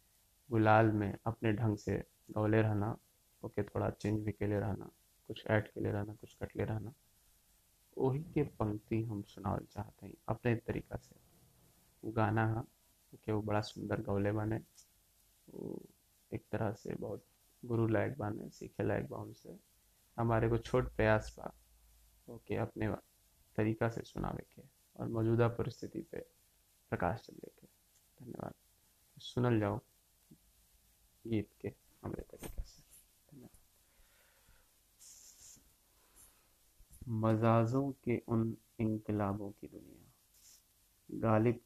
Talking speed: 120 wpm